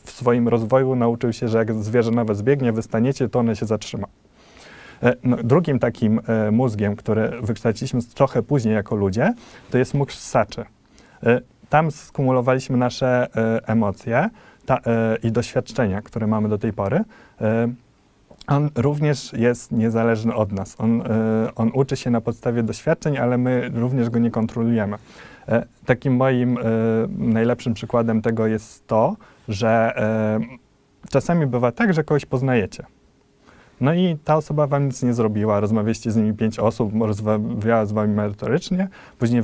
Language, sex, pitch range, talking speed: Polish, male, 110-130 Hz, 140 wpm